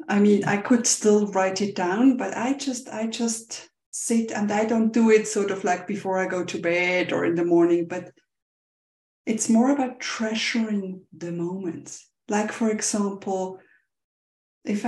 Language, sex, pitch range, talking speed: English, female, 185-230 Hz, 170 wpm